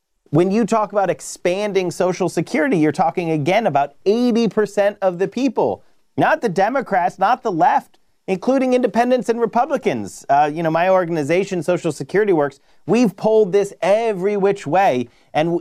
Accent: American